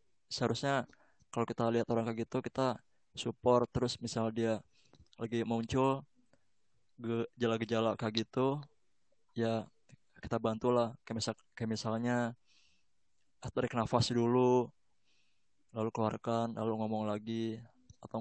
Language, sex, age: Indonesian, male, 20-39